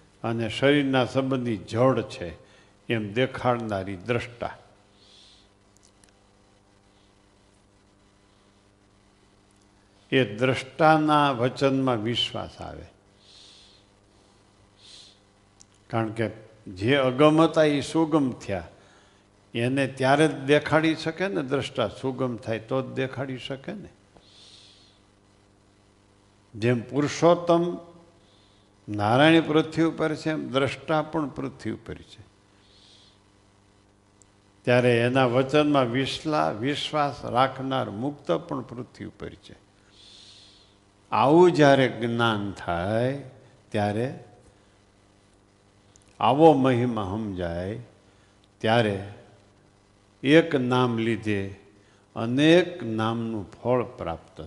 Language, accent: Gujarati, native